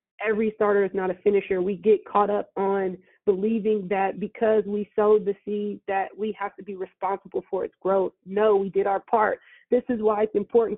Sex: female